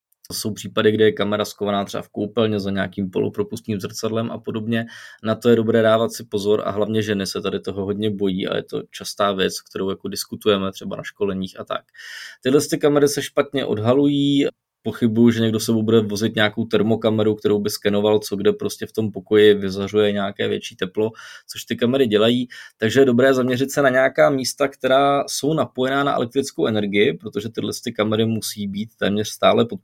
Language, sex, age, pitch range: Czech, male, 20-39, 100-120 Hz